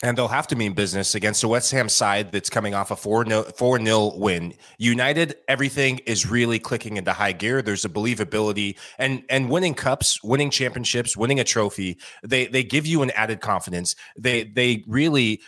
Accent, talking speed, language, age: American, 200 wpm, English, 20-39